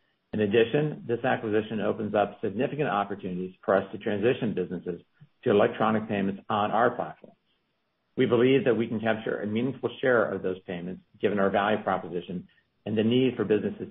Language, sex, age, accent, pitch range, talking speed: English, male, 50-69, American, 95-115 Hz, 175 wpm